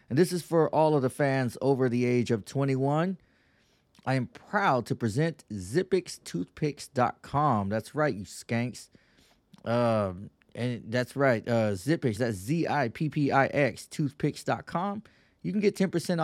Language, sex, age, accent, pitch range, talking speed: English, male, 20-39, American, 110-145 Hz, 130 wpm